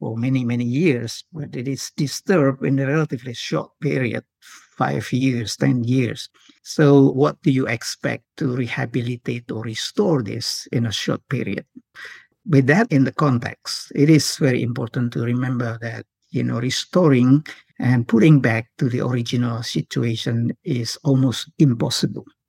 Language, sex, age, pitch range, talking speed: English, male, 50-69, 120-150 Hz, 150 wpm